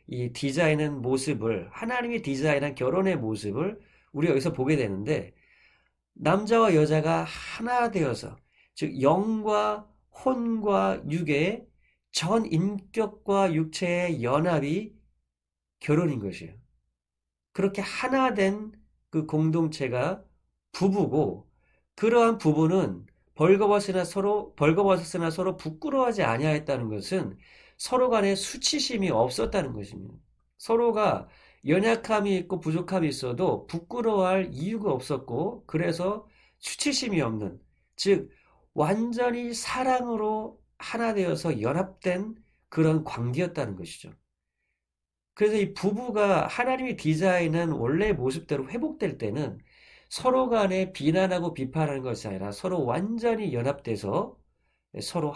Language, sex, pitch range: Korean, male, 145-210 Hz